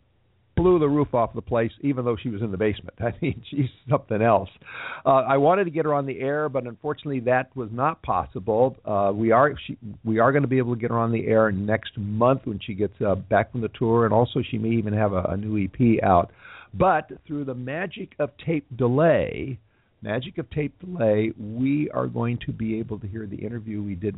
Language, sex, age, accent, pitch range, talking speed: English, male, 50-69, American, 105-140 Hz, 230 wpm